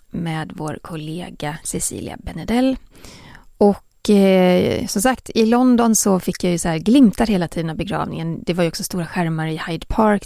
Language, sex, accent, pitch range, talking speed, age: Swedish, female, native, 170-220 Hz, 180 wpm, 30-49